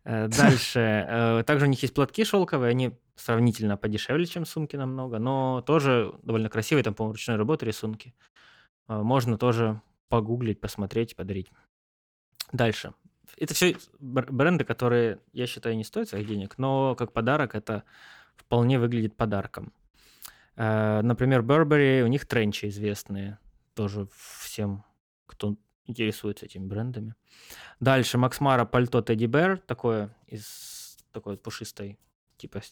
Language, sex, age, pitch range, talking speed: Russian, male, 20-39, 110-135 Hz, 125 wpm